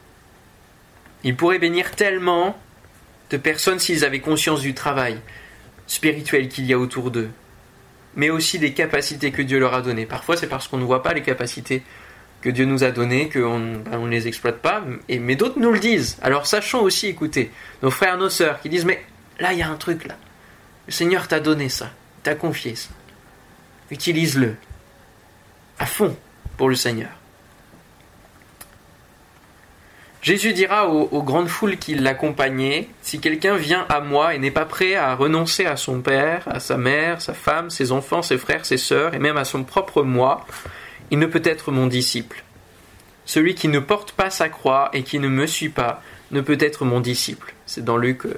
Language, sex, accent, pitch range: French, male, French, 125-160 Hz